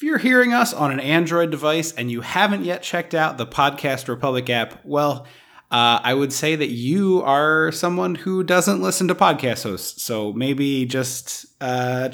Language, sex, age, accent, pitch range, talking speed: English, male, 30-49, American, 125-180 Hz, 185 wpm